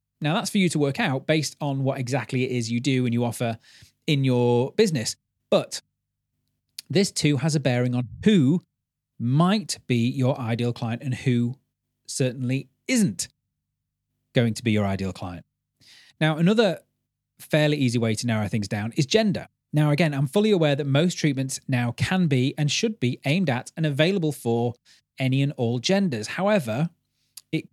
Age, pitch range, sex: 30-49, 125-170 Hz, male